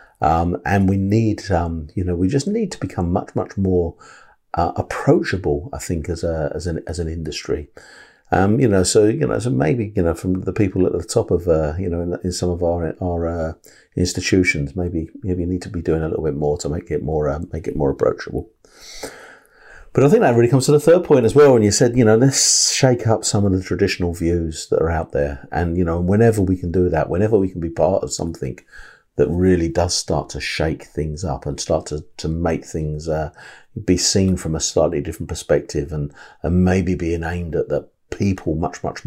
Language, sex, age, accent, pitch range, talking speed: English, male, 50-69, British, 75-95 Hz, 230 wpm